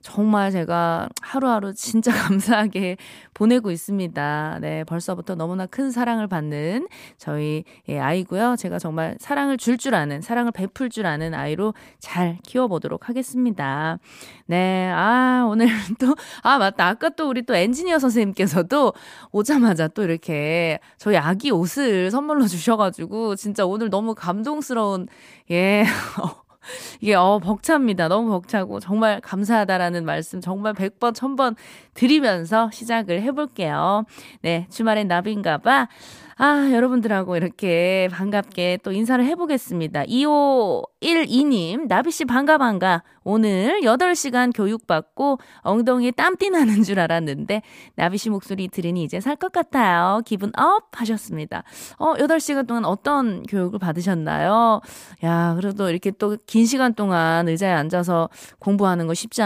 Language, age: Korean, 20-39